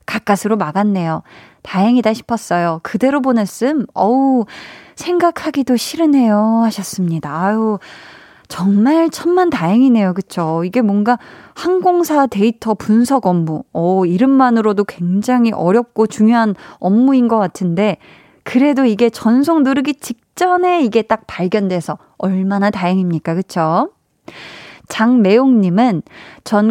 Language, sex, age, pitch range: Korean, female, 20-39, 190-245 Hz